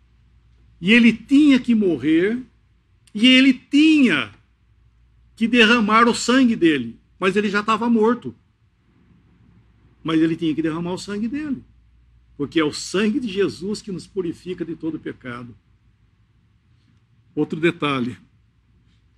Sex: male